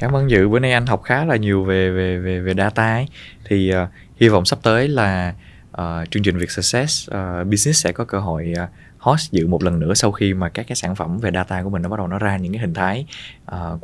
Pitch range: 90-115 Hz